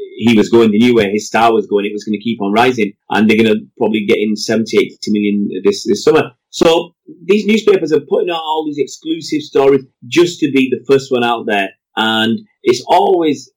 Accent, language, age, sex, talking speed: British, English, 30-49, male, 220 wpm